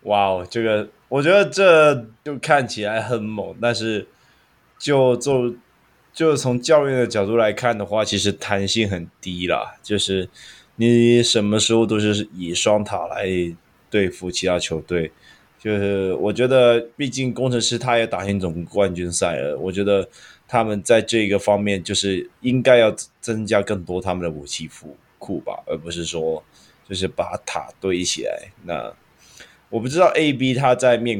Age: 20-39